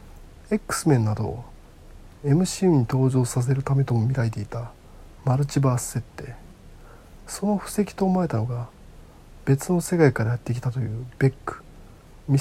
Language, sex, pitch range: Japanese, male, 110-150 Hz